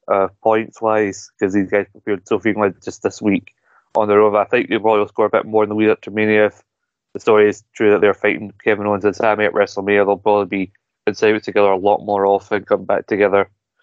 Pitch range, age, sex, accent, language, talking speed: 105-115 Hz, 20-39, male, British, English, 225 wpm